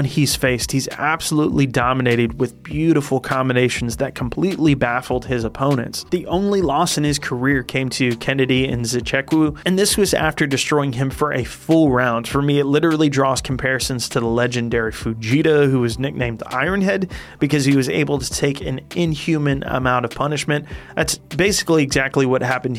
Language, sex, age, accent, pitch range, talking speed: English, male, 30-49, American, 125-155 Hz, 170 wpm